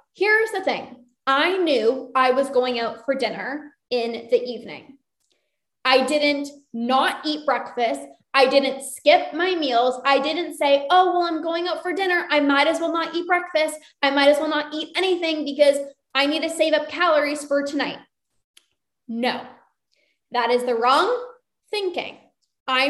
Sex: female